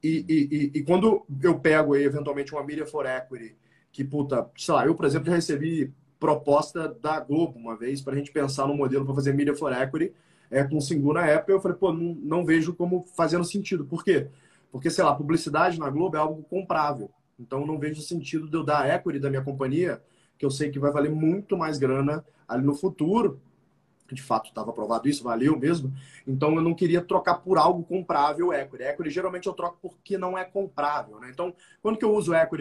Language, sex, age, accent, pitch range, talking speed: Portuguese, male, 20-39, Brazilian, 135-165 Hz, 220 wpm